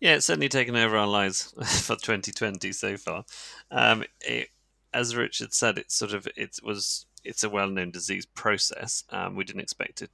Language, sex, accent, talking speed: English, male, British, 195 wpm